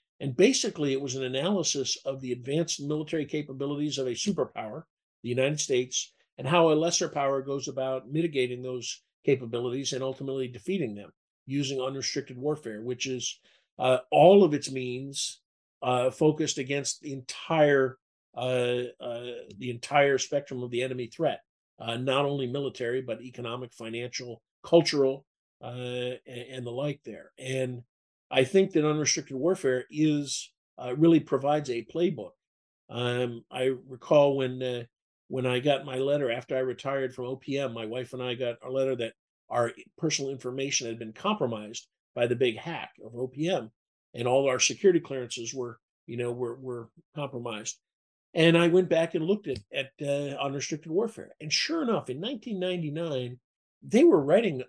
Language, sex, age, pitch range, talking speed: English, male, 50-69, 125-150 Hz, 160 wpm